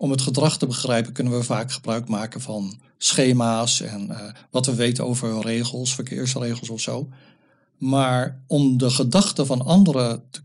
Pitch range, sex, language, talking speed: 115-135 Hz, male, Dutch, 165 wpm